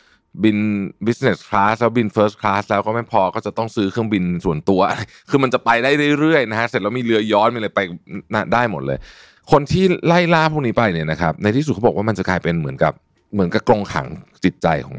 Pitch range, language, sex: 90-120 Hz, Thai, male